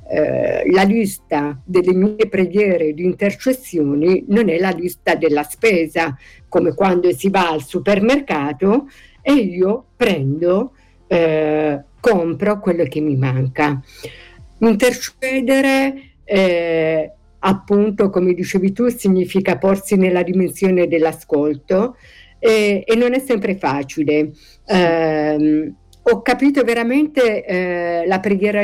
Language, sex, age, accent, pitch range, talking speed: Italian, female, 50-69, native, 165-215 Hz, 105 wpm